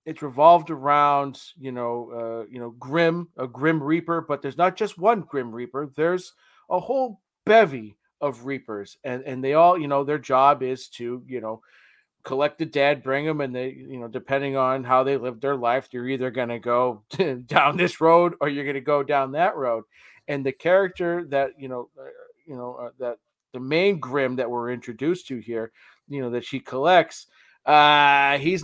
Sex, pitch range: male, 130-160 Hz